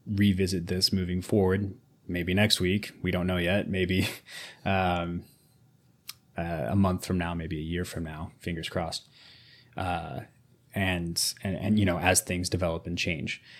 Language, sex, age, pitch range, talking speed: English, male, 20-39, 95-115 Hz, 160 wpm